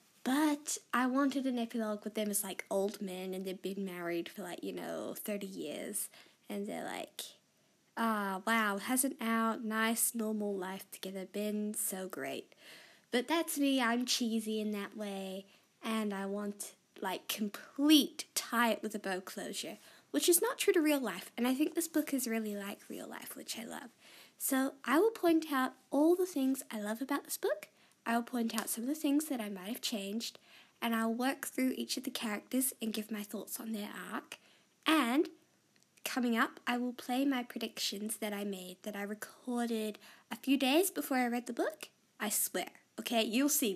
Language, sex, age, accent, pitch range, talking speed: English, female, 10-29, American, 210-275 Hz, 185 wpm